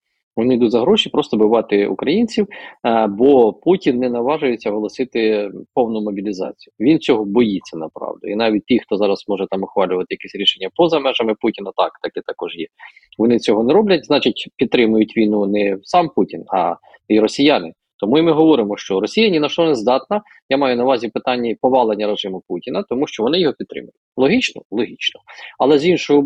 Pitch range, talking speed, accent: 110-145 Hz, 180 wpm, native